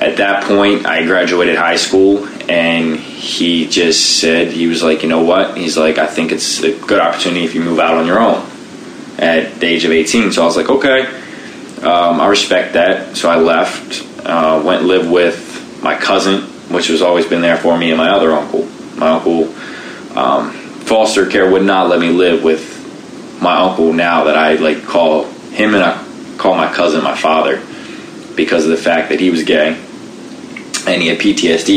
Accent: American